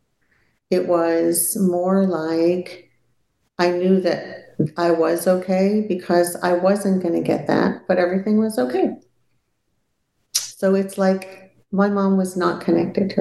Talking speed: 135 wpm